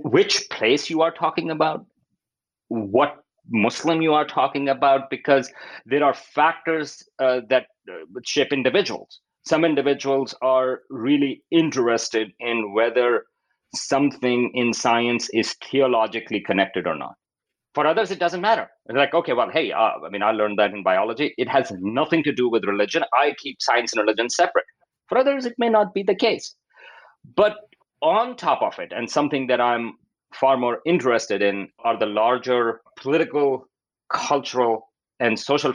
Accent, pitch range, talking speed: Indian, 110-150 Hz, 160 wpm